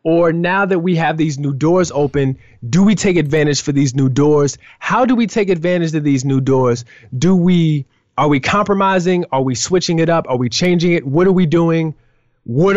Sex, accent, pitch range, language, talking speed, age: male, American, 115-155 Hz, English, 210 wpm, 20-39